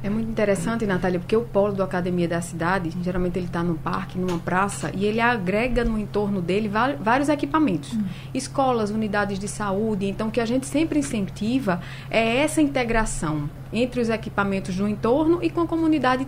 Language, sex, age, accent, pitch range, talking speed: Portuguese, female, 20-39, Brazilian, 180-235 Hz, 180 wpm